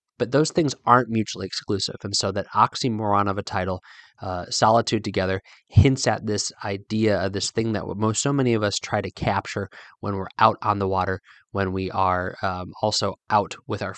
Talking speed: 200 wpm